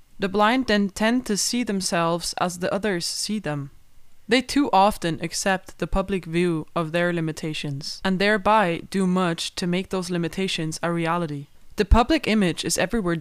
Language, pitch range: English, 165-200 Hz